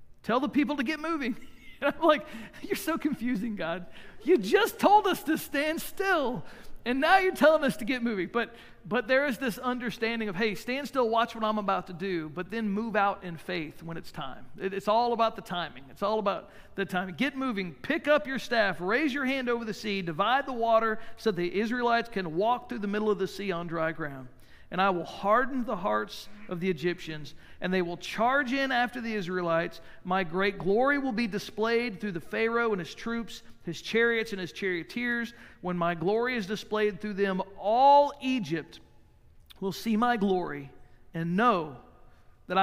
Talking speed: 200 wpm